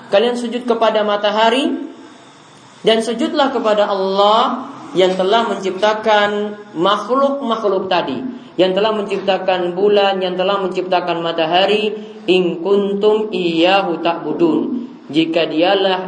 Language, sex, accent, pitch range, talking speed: Indonesian, male, native, 180-230 Hz, 100 wpm